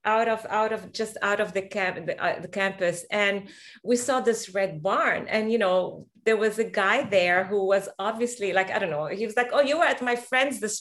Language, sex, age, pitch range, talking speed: English, female, 30-49, 200-275 Hz, 245 wpm